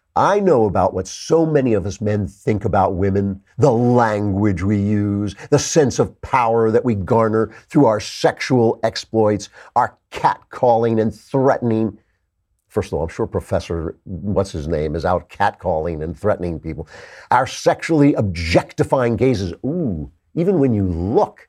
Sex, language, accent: male, English, American